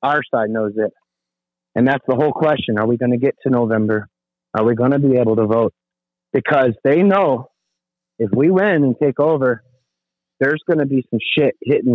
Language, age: English, 30-49